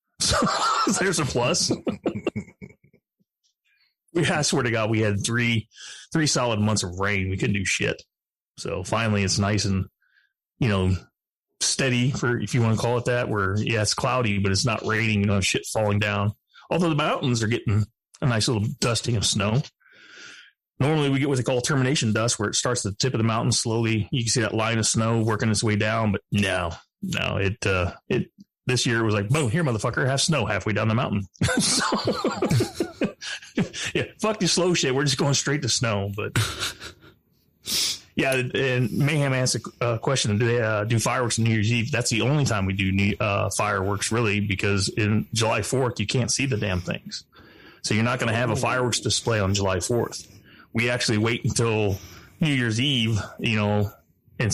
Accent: American